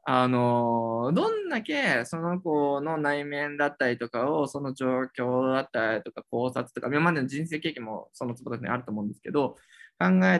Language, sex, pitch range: Japanese, male, 120-180 Hz